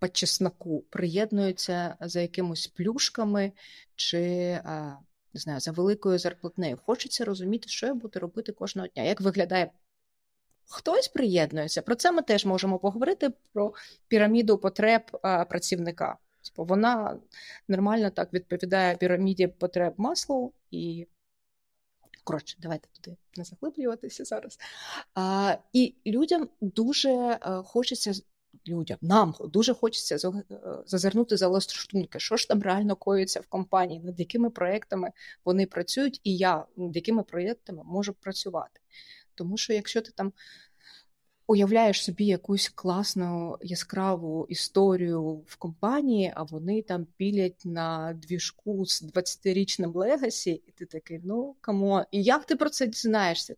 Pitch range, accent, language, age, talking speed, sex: 180-225 Hz, native, Ukrainian, 30-49, 125 wpm, female